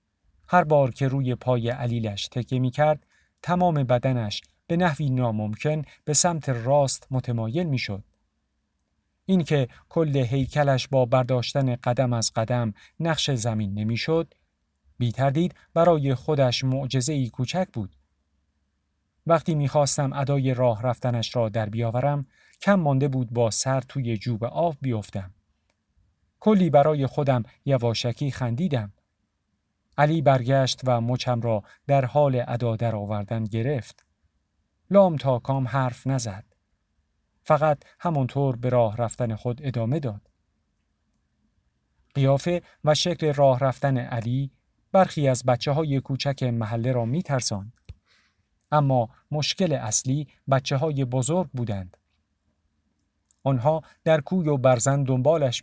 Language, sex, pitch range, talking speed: Persian, male, 105-140 Hz, 120 wpm